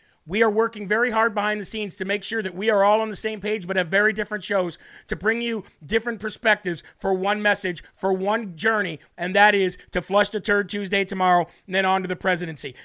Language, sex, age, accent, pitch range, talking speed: English, male, 40-59, American, 195-225 Hz, 235 wpm